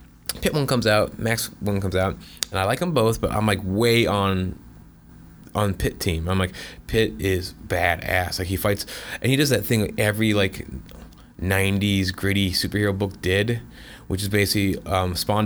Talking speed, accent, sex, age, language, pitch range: 180 wpm, American, male, 20-39, English, 90-105 Hz